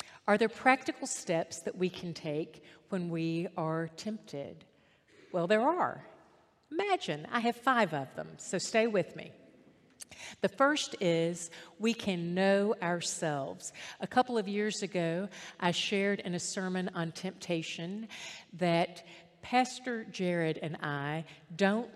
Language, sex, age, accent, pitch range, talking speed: English, female, 50-69, American, 170-230 Hz, 135 wpm